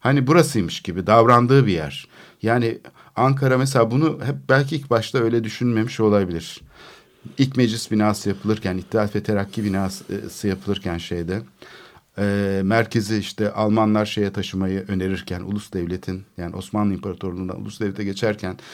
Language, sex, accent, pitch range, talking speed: Turkish, male, native, 100-135 Hz, 135 wpm